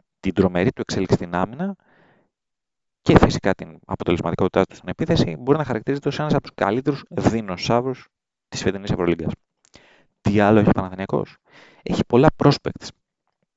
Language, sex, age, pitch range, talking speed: Greek, male, 30-49, 95-130 Hz, 145 wpm